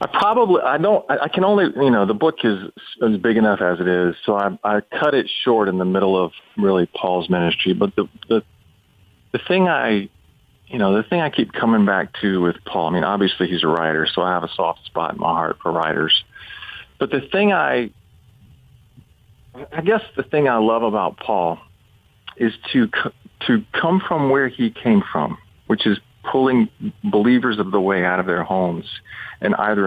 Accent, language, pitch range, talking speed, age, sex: American, English, 95-120 Hz, 200 wpm, 40-59, male